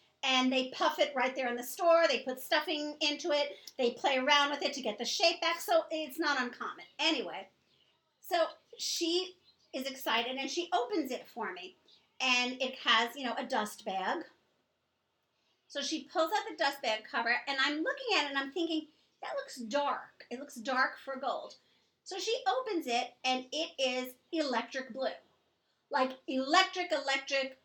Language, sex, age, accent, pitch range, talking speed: English, female, 40-59, American, 260-335 Hz, 180 wpm